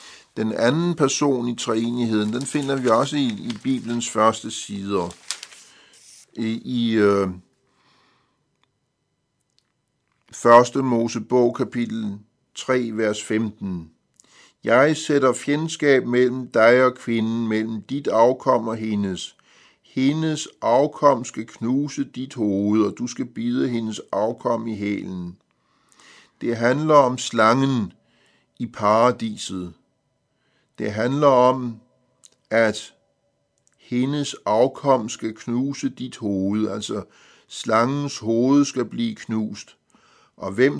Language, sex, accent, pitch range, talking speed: Danish, male, native, 110-135 Hz, 105 wpm